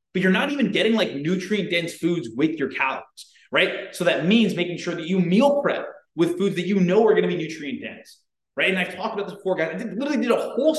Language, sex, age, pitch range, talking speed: English, male, 20-39, 175-220 Hz, 240 wpm